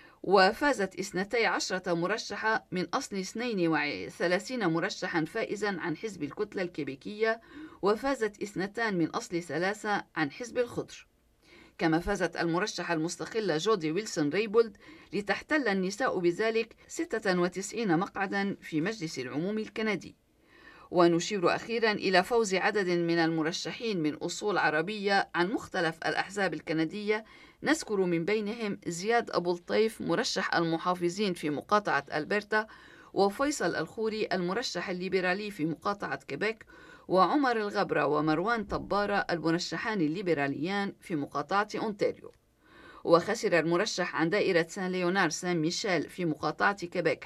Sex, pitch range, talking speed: female, 165-215 Hz, 115 wpm